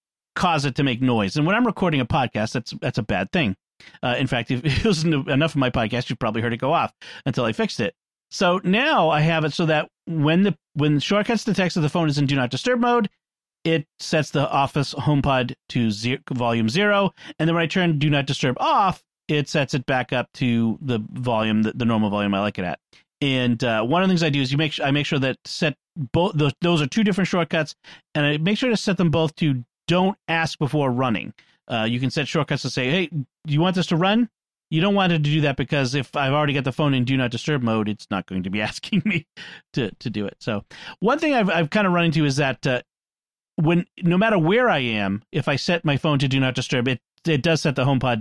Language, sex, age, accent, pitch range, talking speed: English, male, 40-59, American, 130-170 Hz, 255 wpm